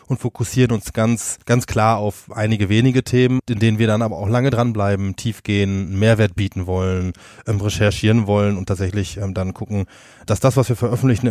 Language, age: German, 20-39